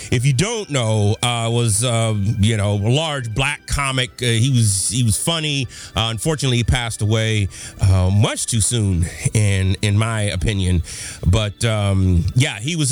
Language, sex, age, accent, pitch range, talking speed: English, male, 30-49, American, 115-155 Hz, 170 wpm